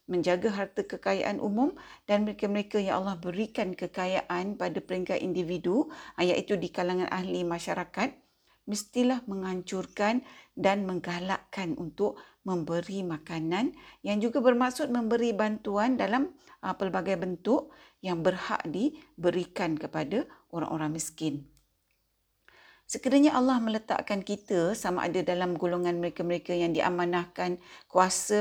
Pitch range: 175-220 Hz